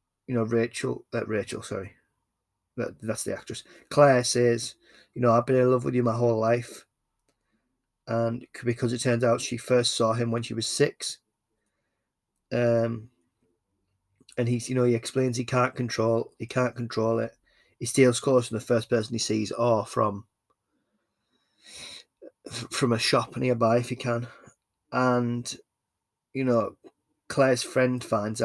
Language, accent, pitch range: English, British, 115-125 Hz